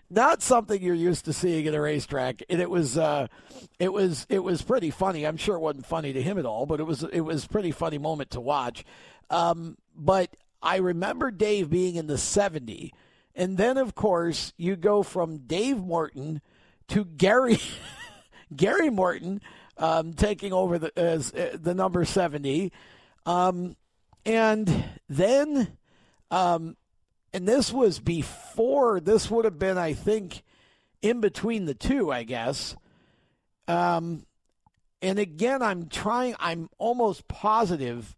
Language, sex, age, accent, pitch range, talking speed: English, male, 50-69, American, 155-200 Hz, 155 wpm